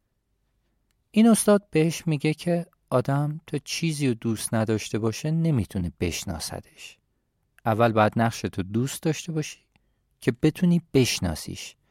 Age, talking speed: 40-59, 120 wpm